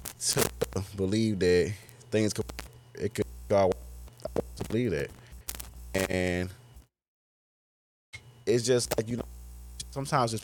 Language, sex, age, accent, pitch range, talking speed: English, male, 20-39, American, 90-120 Hz, 110 wpm